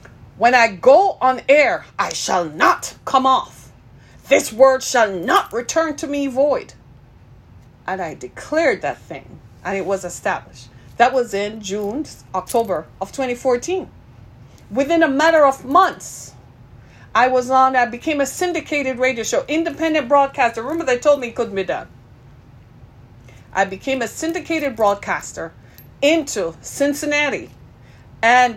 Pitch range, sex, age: 205-290 Hz, female, 40-59